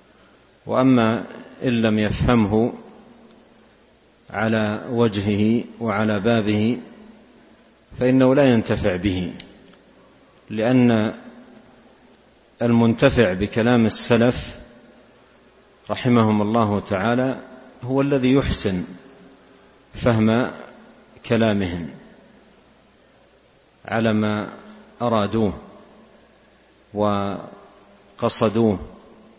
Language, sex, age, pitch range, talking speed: Arabic, male, 50-69, 105-125 Hz, 55 wpm